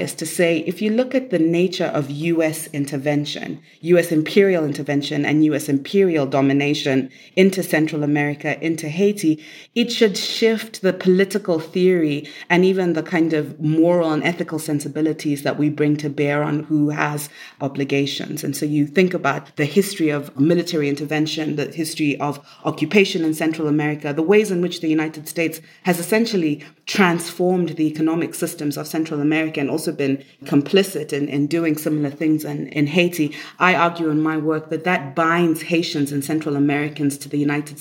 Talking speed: 170 wpm